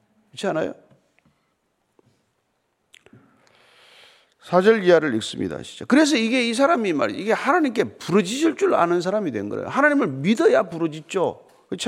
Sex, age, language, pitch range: male, 40-59, Korean, 165-270 Hz